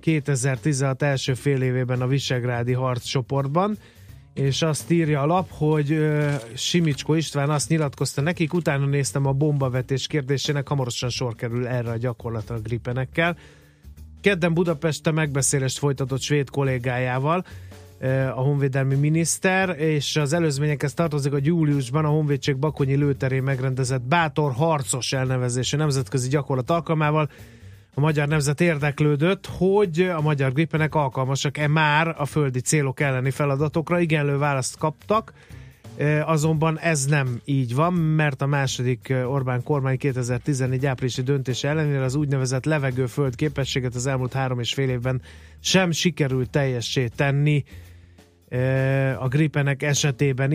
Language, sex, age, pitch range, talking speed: Hungarian, male, 30-49, 130-155 Hz, 125 wpm